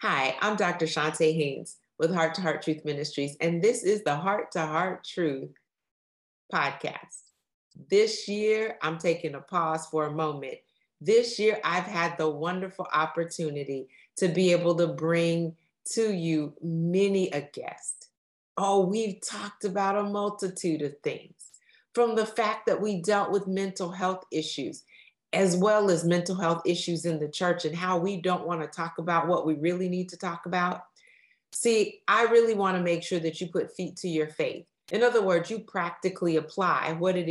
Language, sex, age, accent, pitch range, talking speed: English, female, 40-59, American, 165-205 Hz, 175 wpm